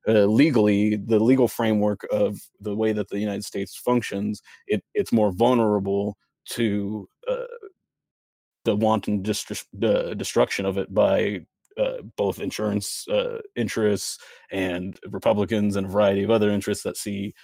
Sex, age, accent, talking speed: male, 30-49, American, 140 wpm